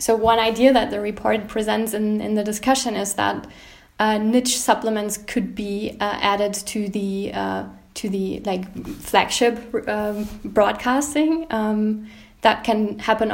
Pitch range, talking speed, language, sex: 210-240 Hz, 150 wpm, English, female